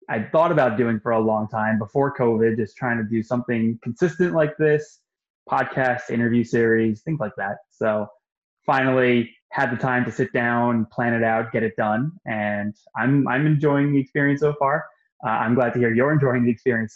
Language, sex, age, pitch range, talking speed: English, male, 20-39, 110-130 Hz, 195 wpm